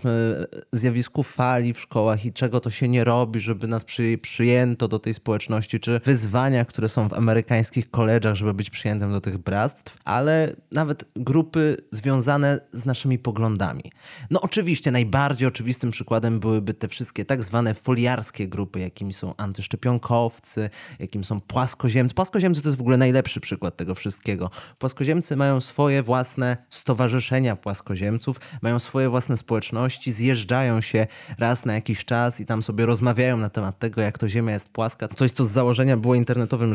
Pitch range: 115-140 Hz